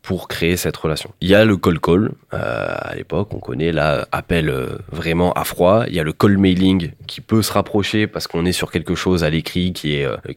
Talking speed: 235 wpm